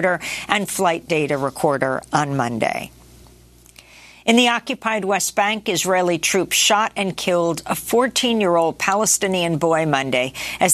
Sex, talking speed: female, 125 wpm